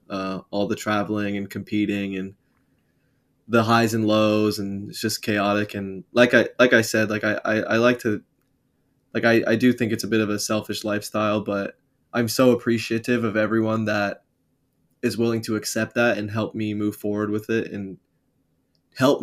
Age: 20-39